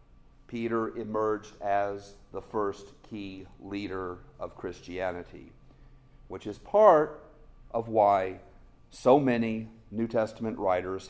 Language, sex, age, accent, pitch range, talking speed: English, male, 50-69, American, 105-135 Hz, 105 wpm